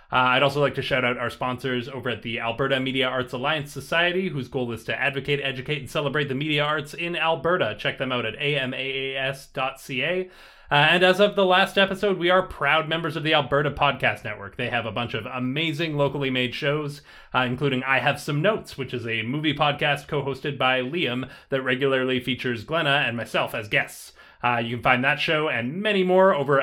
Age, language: 30-49, English